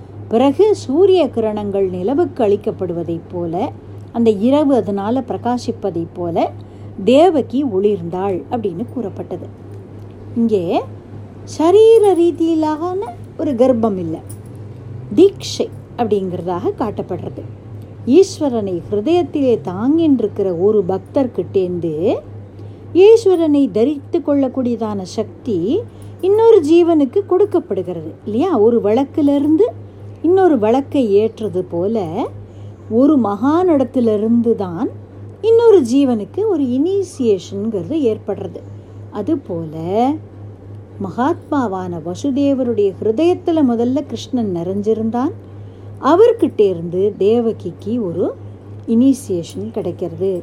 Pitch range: 170-280 Hz